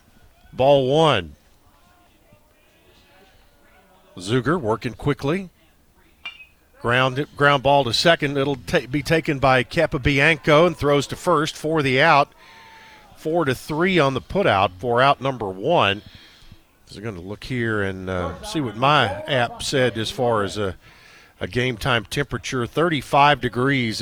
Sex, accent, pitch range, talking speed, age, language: male, American, 110-145 Hz, 145 wpm, 50-69, English